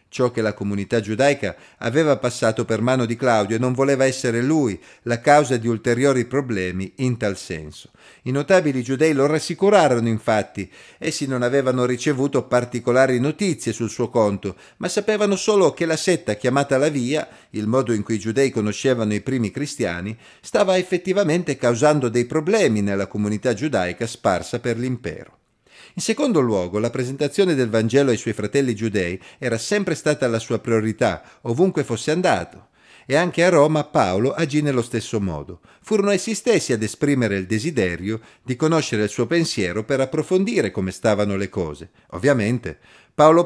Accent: native